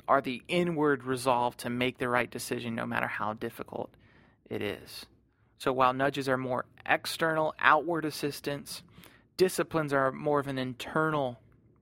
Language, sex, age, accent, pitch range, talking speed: English, male, 30-49, American, 120-145 Hz, 145 wpm